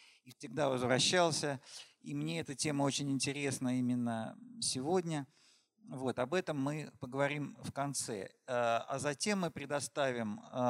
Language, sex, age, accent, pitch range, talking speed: Russian, male, 50-69, native, 125-155 Hz, 125 wpm